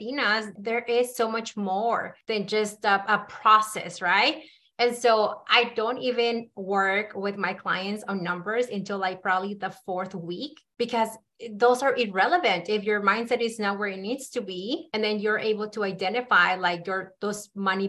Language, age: English, 30-49